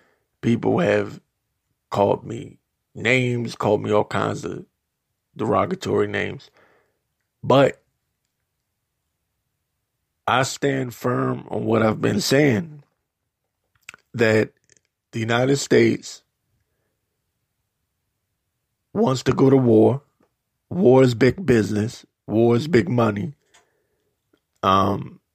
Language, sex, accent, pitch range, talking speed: English, male, American, 100-125 Hz, 90 wpm